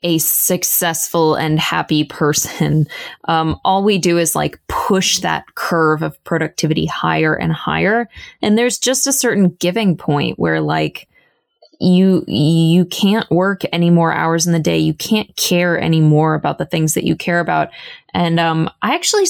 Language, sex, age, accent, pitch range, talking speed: English, female, 20-39, American, 155-185 Hz, 165 wpm